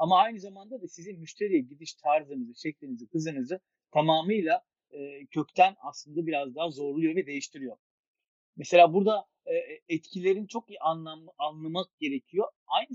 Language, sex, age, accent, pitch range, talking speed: Turkish, male, 40-59, native, 145-200 Hz, 135 wpm